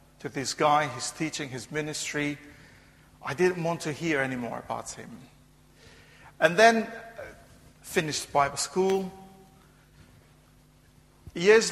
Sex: male